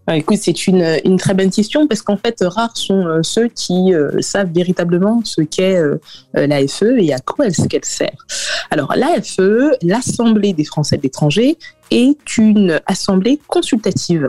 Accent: French